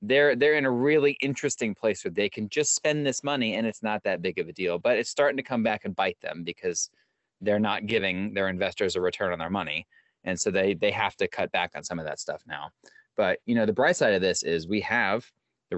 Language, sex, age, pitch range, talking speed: English, male, 20-39, 95-140 Hz, 260 wpm